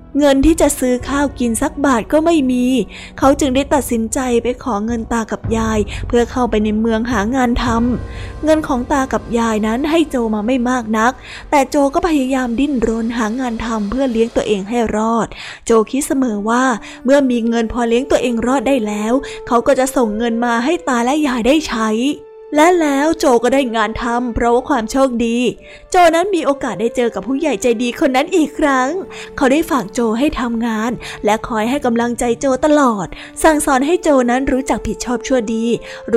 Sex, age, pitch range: female, 20-39, 230-280 Hz